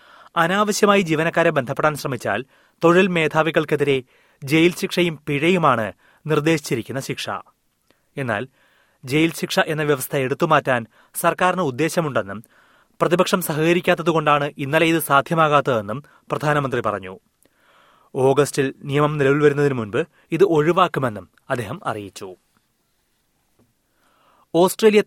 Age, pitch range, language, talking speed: 30-49, 135-165 Hz, Malayalam, 90 wpm